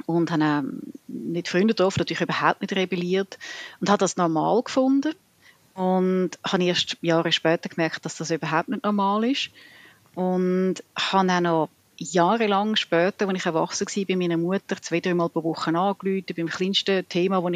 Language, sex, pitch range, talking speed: German, female, 165-200 Hz, 155 wpm